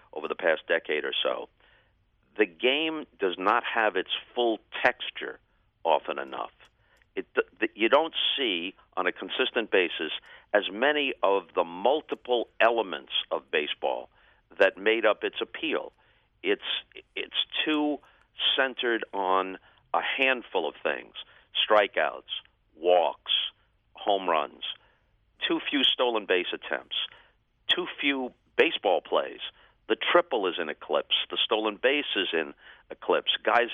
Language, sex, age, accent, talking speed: English, male, 50-69, American, 125 wpm